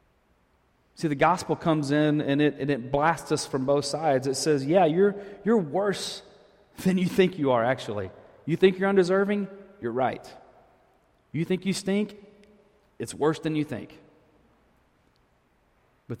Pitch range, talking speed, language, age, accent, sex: 125-165 Hz, 155 wpm, English, 40-59, American, male